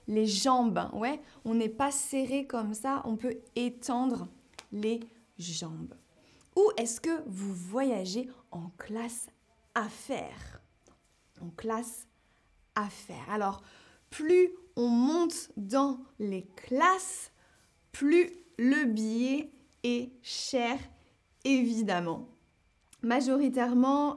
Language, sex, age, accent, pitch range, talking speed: French, female, 20-39, French, 220-275 Hz, 95 wpm